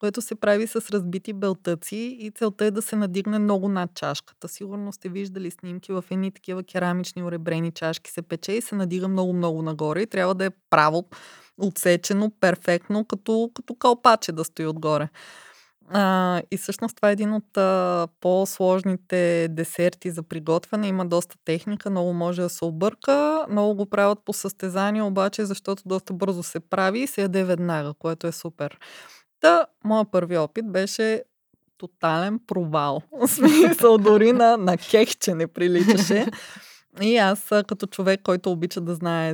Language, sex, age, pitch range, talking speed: Bulgarian, female, 20-39, 180-220 Hz, 160 wpm